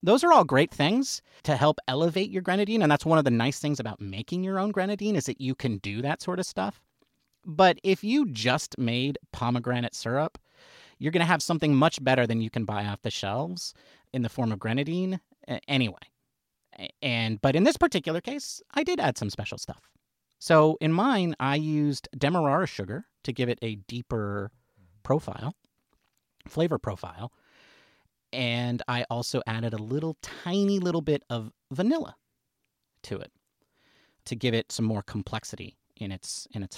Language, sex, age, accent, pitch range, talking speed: English, male, 30-49, American, 105-155 Hz, 175 wpm